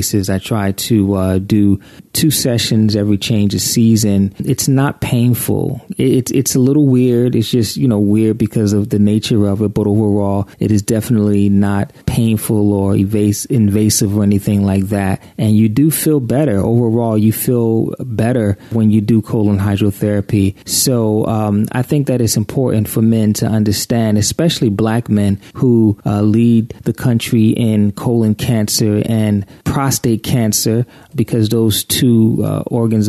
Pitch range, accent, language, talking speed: 105-120 Hz, American, English, 165 wpm